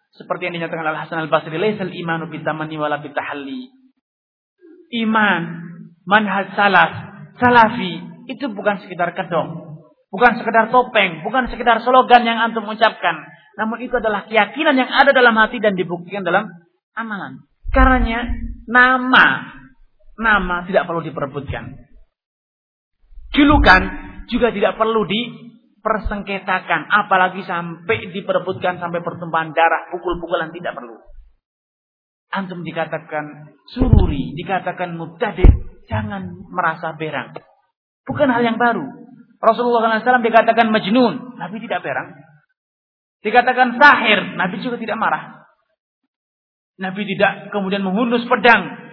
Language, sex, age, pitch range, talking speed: Malay, male, 30-49, 175-235 Hz, 110 wpm